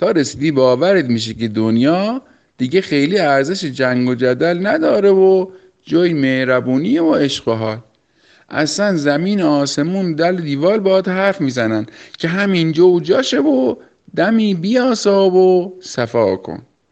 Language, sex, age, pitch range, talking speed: Persian, male, 50-69, 135-190 Hz, 140 wpm